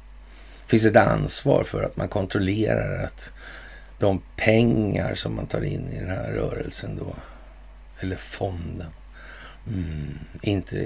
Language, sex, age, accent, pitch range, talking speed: Swedish, male, 60-79, native, 80-110 Hz, 125 wpm